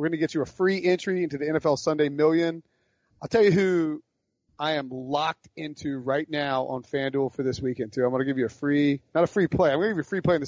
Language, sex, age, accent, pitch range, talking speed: English, male, 30-49, American, 135-160 Hz, 290 wpm